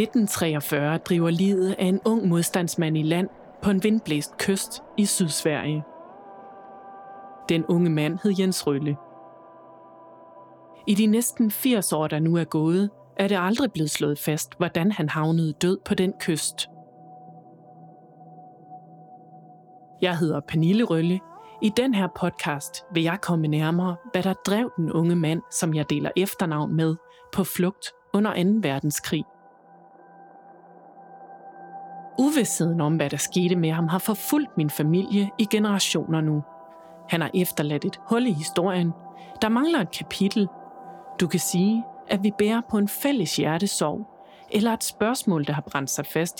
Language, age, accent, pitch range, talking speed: Danish, 30-49, native, 155-200 Hz, 145 wpm